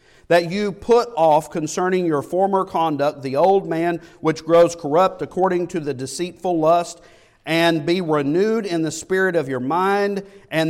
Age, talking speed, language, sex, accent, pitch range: 50-69, 165 wpm, English, male, American, 125-185 Hz